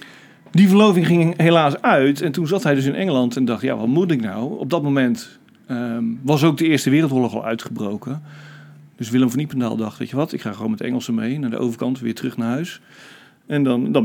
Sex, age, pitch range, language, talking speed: male, 40-59, 120-165 Hz, Dutch, 235 wpm